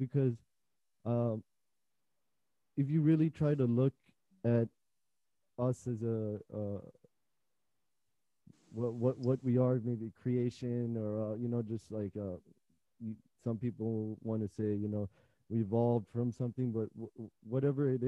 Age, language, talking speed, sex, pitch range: 20-39, English, 145 wpm, male, 115-130 Hz